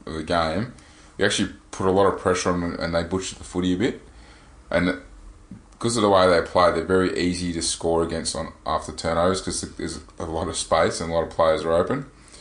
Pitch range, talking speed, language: 85-95 Hz, 230 wpm, English